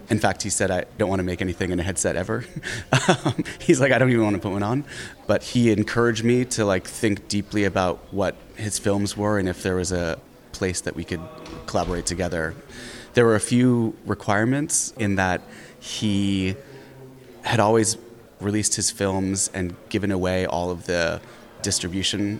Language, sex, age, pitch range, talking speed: English, male, 30-49, 90-115 Hz, 180 wpm